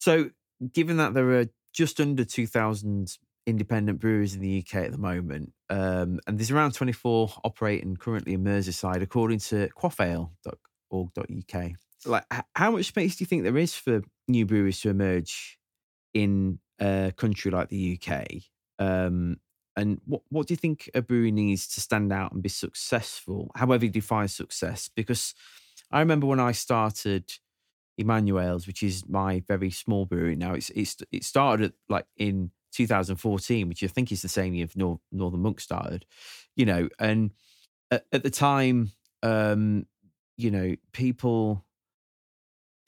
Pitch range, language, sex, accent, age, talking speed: 95-115 Hz, English, male, British, 20-39, 155 wpm